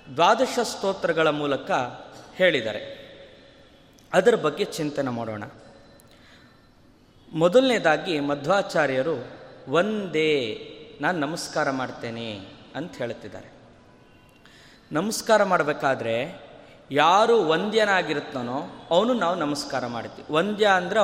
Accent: native